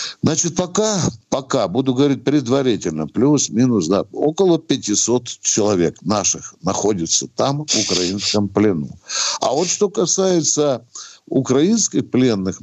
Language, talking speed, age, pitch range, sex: Russian, 110 wpm, 60-79, 110-160 Hz, male